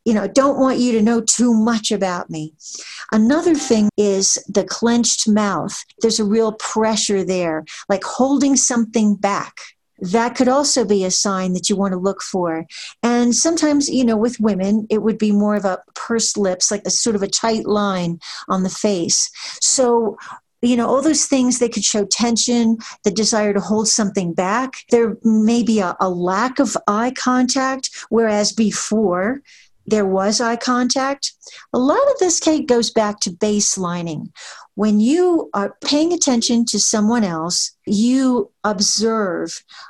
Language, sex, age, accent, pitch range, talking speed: English, female, 50-69, American, 200-250 Hz, 165 wpm